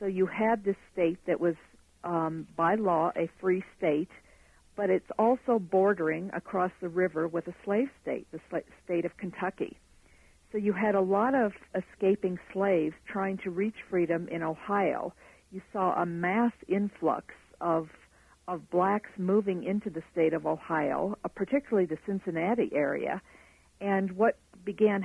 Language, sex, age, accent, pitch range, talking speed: English, female, 50-69, American, 170-200 Hz, 155 wpm